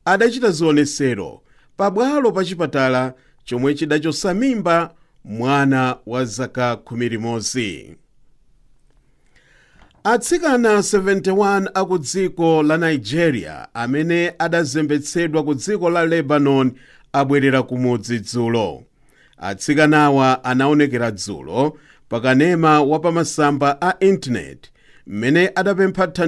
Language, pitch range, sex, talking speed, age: English, 135-185 Hz, male, 80 wpm, 50-69